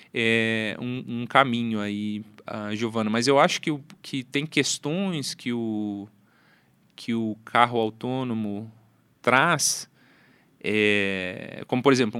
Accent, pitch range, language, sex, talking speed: Brazilian, 115-145 Hz, Portuguese, male, 130 wpm